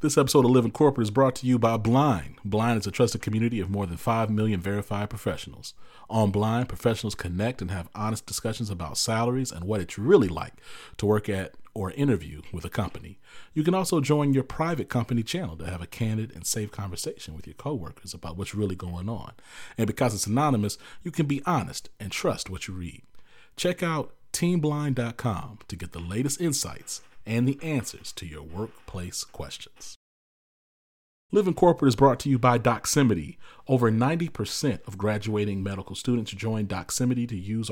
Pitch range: 95-125 Hz